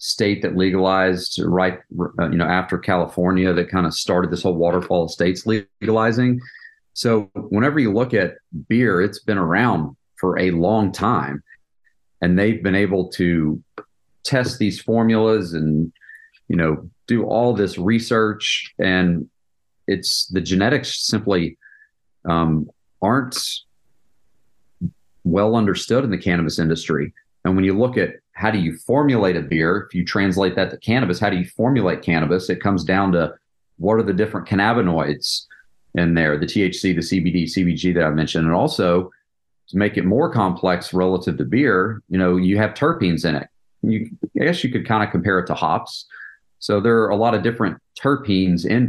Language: English